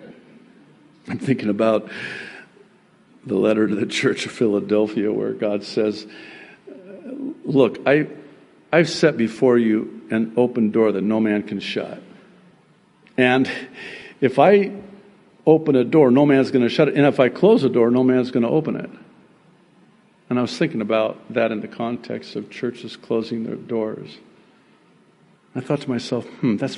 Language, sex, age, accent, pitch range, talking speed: English, male, 60-79, American, 110-150 Hz, 160 wpm